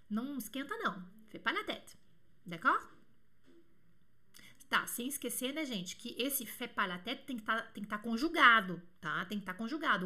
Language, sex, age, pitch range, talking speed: French, female, 30-49, 210-295 Hz, 150 wpm